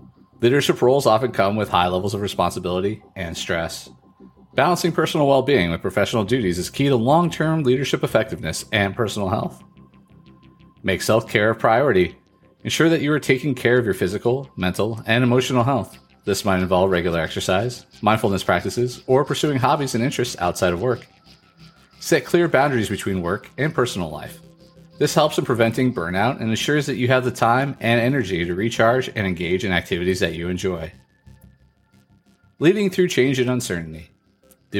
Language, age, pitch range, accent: English, 40-59, 95-130 Hz, American